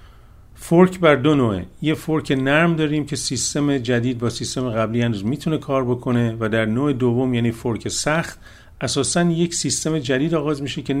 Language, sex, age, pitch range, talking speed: Persian, male, 50-69, 110-145 Hz, 175 wpm